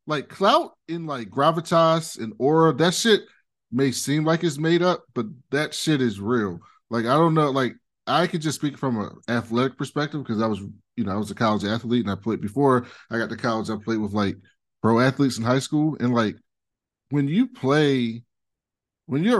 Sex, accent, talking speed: male, American, 205 wpm